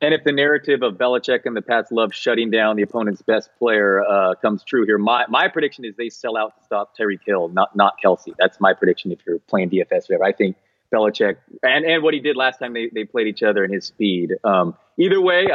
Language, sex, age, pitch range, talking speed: English, male, 30-49, 115-155 Hz, 245 wpm